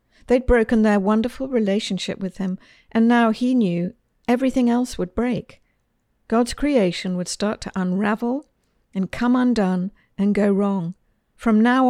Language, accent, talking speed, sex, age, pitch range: English, British, 145 wpm, female, 50-69, 180-230 Hz